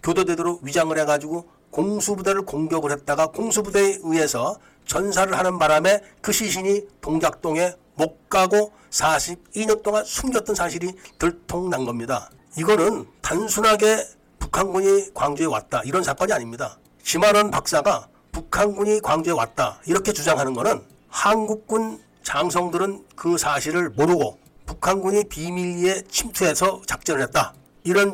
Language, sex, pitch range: Korean, male, 155-210 Hz